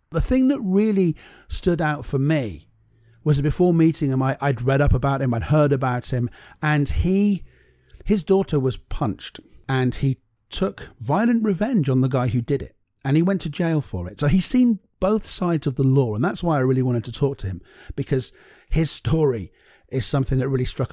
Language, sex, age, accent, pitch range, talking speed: English, male, 40-59, British, 120-155 Hz, 205 wpm